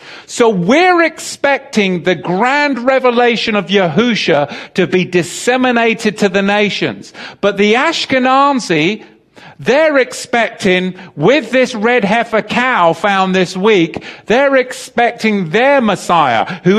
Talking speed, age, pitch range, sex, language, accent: 115 wpm, 40-59, 150-225 Hz, male, English, British